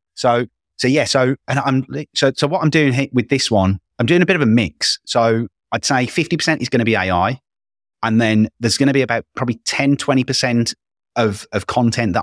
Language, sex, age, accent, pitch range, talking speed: English, male, 30-49, British, 95-130 Hz, 220 wpm